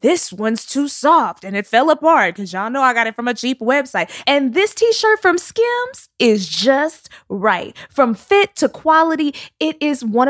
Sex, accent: female, American